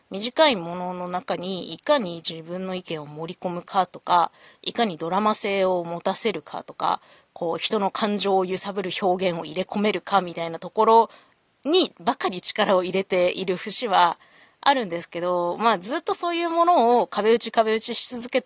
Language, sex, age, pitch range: Japanese, female, 20-39, 175-255 Hz